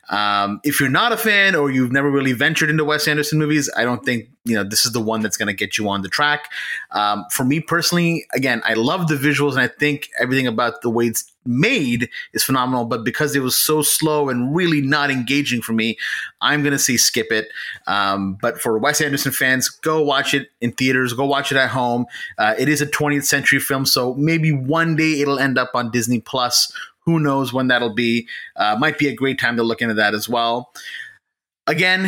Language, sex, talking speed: English, male, 225 wpm